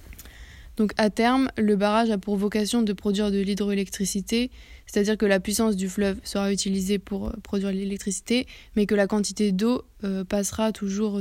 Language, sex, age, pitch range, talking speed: French, female, 20-39, 195-215 Hz, 165 wpm